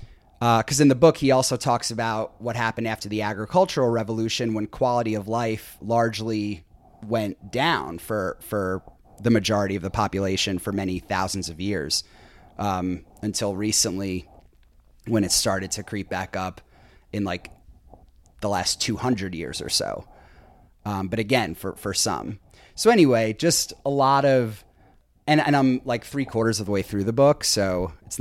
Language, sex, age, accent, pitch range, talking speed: English, male, 30-49, American, 100-120 Hz, 165 wpm